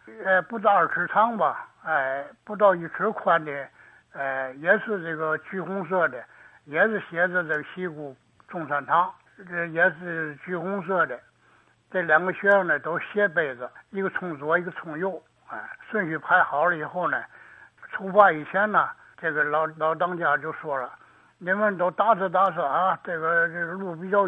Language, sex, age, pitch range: Chinese, male, 60-79, 165-205 Hz